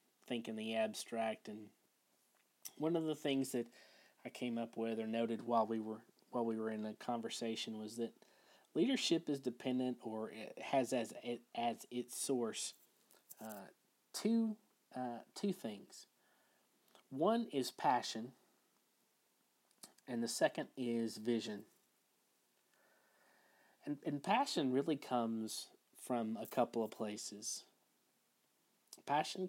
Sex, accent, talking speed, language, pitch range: male, American, 125 wpm, English, 115-140 Hz